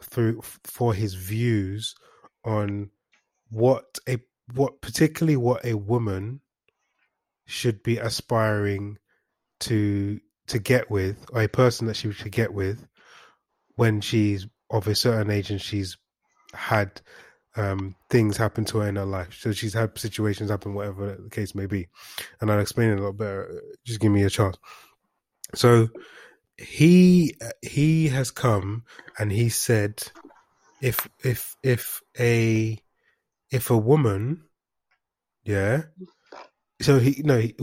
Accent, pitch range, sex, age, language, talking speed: British, 105-125 Hz, male, 20-39, English, 135 wpm